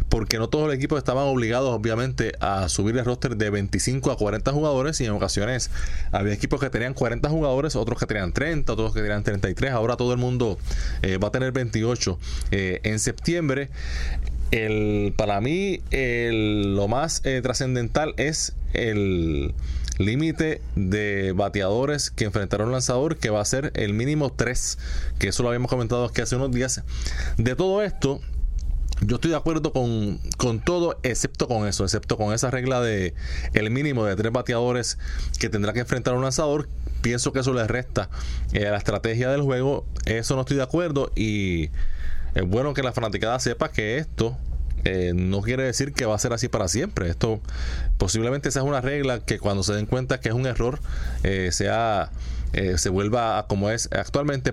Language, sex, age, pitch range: Spanish, male, 20-39, 100-130 Hz